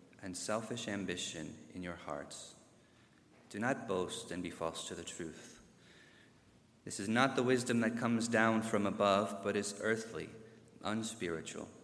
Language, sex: English, male